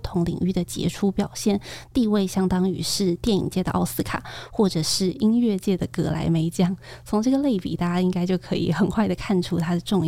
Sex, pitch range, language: female, 175-200 Hz, Chinese